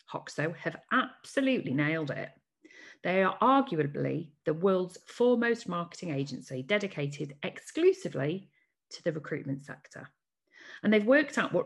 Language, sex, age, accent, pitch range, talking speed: English, female, 40-59, British, 150-220 Hz, 125 wpm